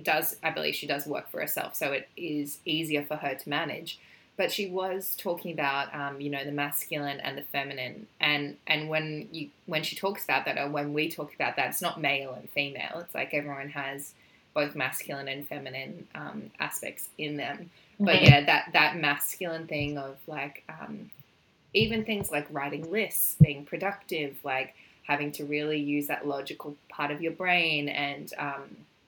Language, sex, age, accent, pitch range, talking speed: English, female, 20-39, Australian, 140-165 Hz, 185 wpm